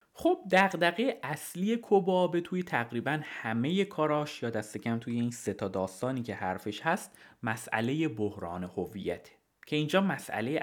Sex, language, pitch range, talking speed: male, Persian, 110-160 Hz, 135 wpm